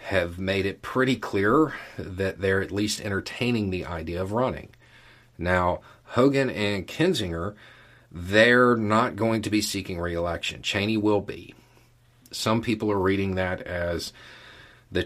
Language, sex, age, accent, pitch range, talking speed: English, male, 40-59, American, 95-120 Hz, 140 wpm